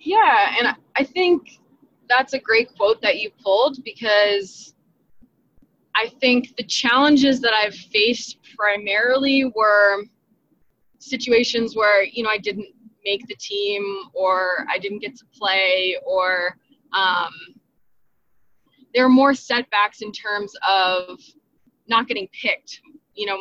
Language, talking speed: English, 130 wpm